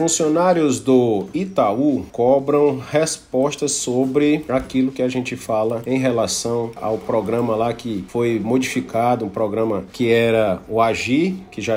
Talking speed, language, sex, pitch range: 140 wpm, Portuguese, male, 120-140 Hz